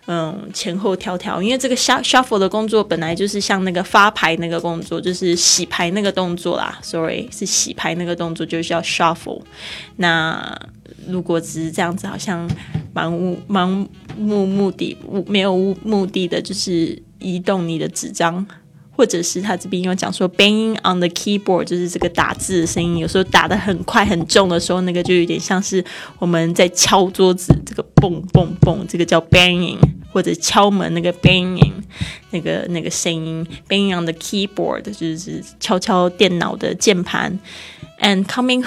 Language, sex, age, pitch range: Chinese, female, 20-39, 175-210 Hz